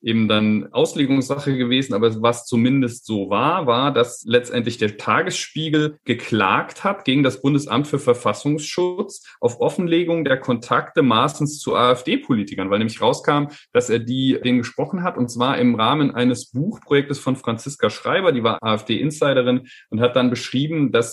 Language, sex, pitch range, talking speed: German, male, 120-145 Hz, 155 wpm